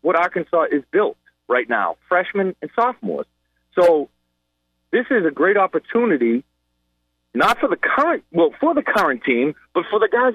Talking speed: 160 wpm